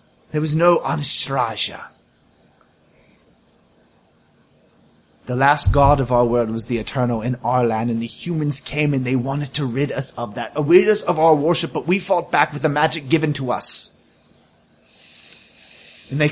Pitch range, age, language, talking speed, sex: 120-150 Hz, 30-49, English, 165 wpm, male